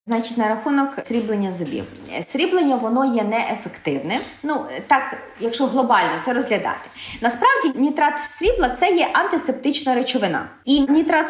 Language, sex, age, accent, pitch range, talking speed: Ukrainian, female, 20-39, native, 230-300 Hz, 135 wpm